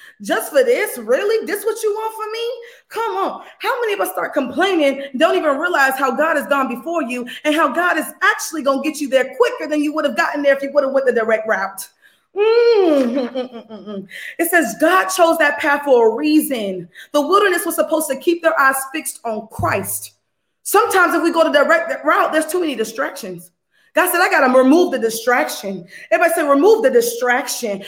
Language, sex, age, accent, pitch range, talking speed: English, female, 20-39, American, 265-360 Hz, 210 wpm